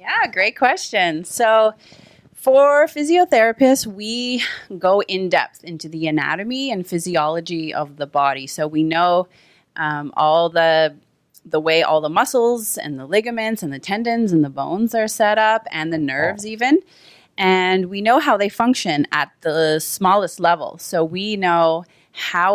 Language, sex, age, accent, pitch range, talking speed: English, female, 30-49, American, 155-210 Hz, 155 wpm